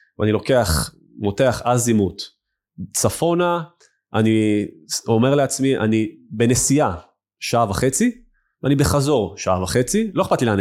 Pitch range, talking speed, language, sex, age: 100-140 Hz, 115 wpm, Hebrew, male, 30-49